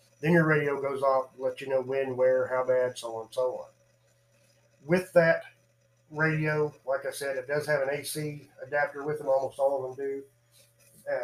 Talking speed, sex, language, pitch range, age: 200 wpm, male, English, 125-155 Hz, 30-49